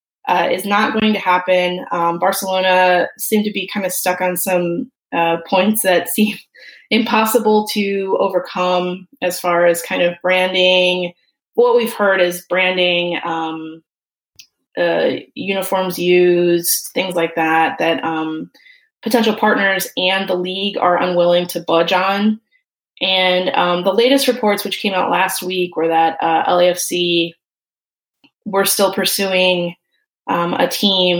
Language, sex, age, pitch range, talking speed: English, female, 20-39, 175-205 Hz, 140 wpm